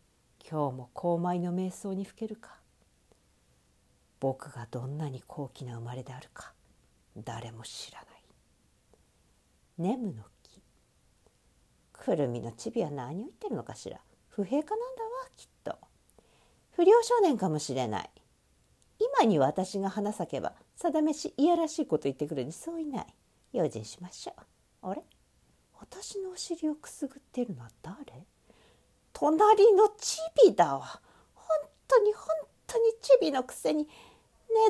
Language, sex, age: Japanese, female, 50-69